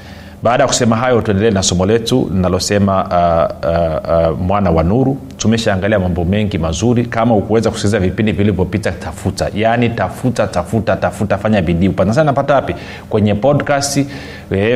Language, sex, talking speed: Swahili, male, 140 wpm